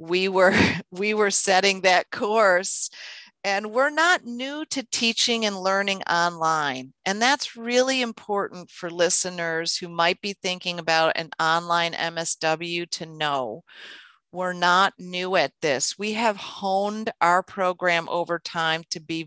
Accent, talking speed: American, 145 wpm